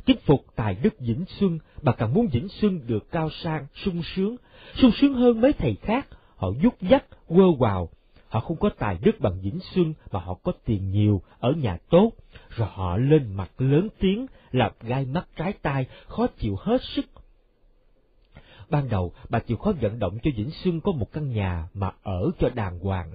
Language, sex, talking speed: Vietnamese, male, 200 wpm